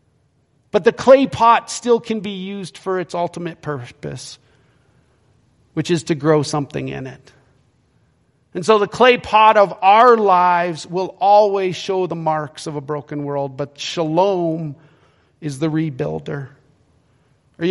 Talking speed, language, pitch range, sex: 140 wpm, English, 140-195 Hz, male